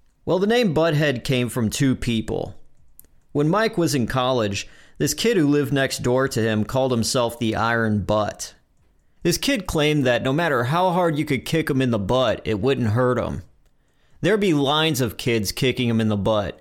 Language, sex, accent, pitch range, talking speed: English, male, American, 110-145 Hz, 200 wpm